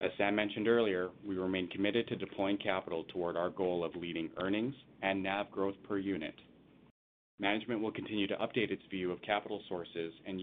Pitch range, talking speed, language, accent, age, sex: 90-110 Hz, 185 wpm, English, American, 30-49, male